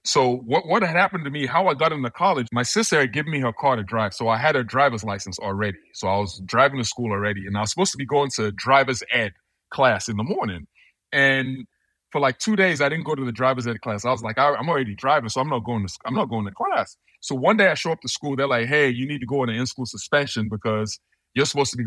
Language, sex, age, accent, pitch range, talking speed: English, male, 30-49, American, 115-155 Hz, 285 wpm